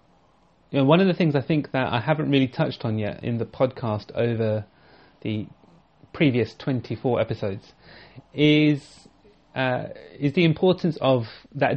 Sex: male